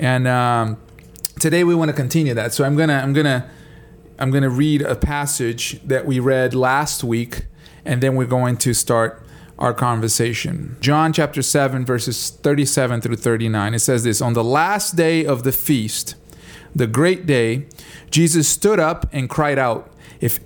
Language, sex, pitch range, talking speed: English, male, 125-160 Hz, 170 wpm